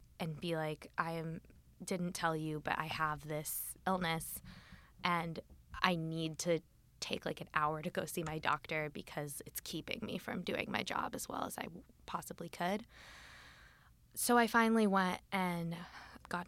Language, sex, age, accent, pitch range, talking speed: English, female, 20-39, American, 160-190 Hz, 170 wpm